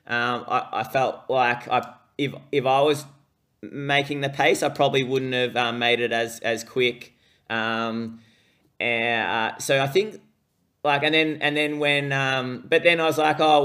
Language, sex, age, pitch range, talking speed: English, male, 20-39, 125-140 Hz, 180 wpm